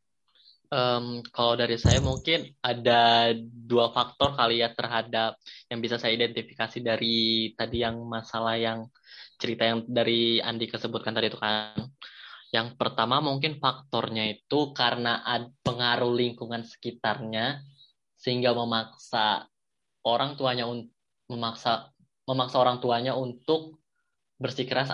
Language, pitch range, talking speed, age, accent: Indonesian, 115-130 Hz, 120 wpm, 10-29, native